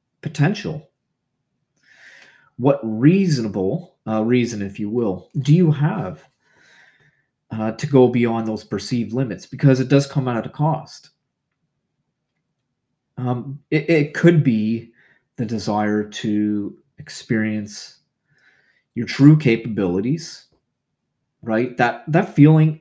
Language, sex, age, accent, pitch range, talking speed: English, male, 30-49, American, 110-145 Hz, 110 wpm